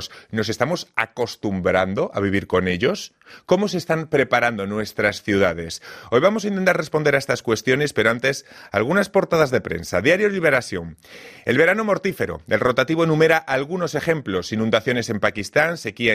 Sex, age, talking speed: male, 30-49, 150 wpm